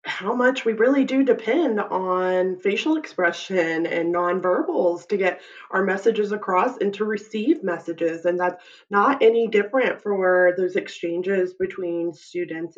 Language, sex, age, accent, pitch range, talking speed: English, female, 20-39, American, 175-225 Hz, 140 wpm